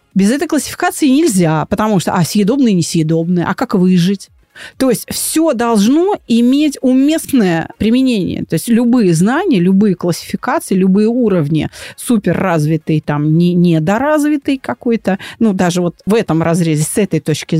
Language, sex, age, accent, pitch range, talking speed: Russian, female, 40-59, native, 170-240 Hz, 135 wpm